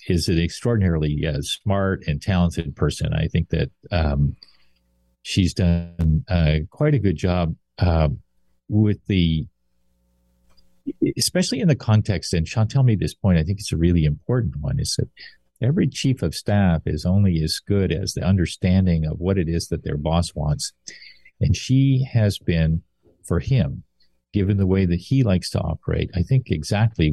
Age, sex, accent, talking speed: 50-69, male, American, 170 wpm